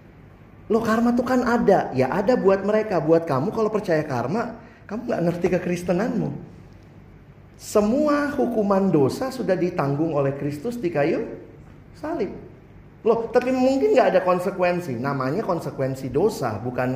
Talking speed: 140 wpm